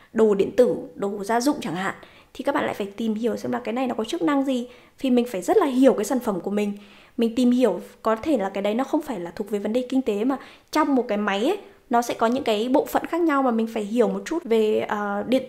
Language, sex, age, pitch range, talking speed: Vietnamese, female, 20-39, 215-260 Hz, 290 wpm